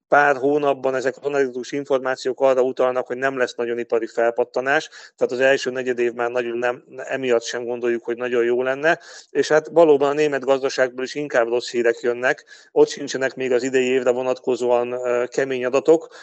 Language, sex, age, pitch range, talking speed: Hungarian, male, 40-59, 120-140 Hz, 180 wpm